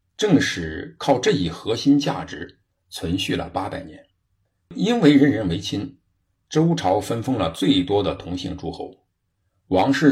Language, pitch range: Chinese, 95-140 Hz